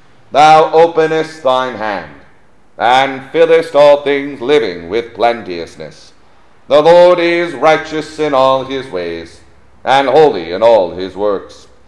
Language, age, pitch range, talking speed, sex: English, 40-59, 105-150 Hz, 125 wpm, male